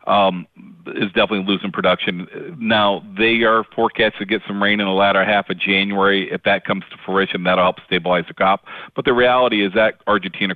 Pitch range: 90-100 Hz